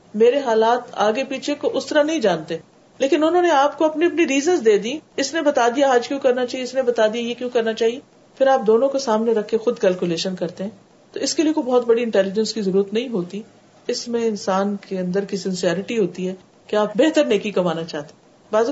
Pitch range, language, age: 200-275 Hz, Urdu, 50-69